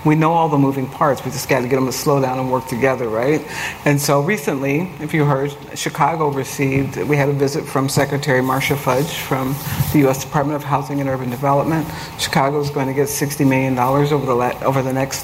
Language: English